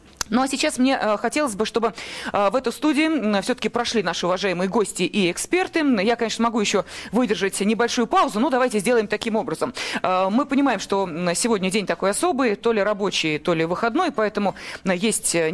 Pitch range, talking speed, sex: 200-275 Hz, 170 wpm, female